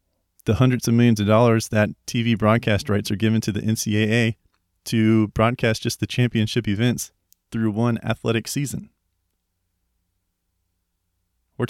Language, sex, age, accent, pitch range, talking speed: English, male, 30-49, American, 90-120 Hz, 135 wpm